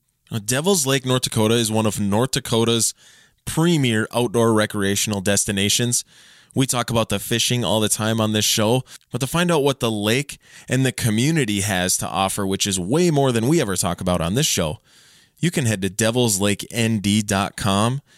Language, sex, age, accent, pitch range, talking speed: English, male, 20-39, American, 105-130 Hz, 180 wpm